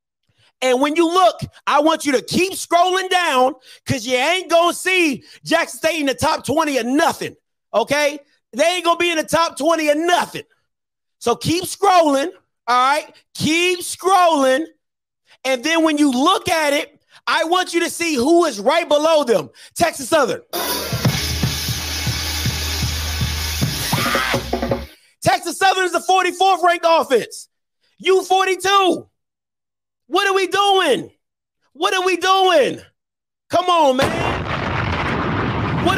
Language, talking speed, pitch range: English, 140 wpm, 290-355 Hz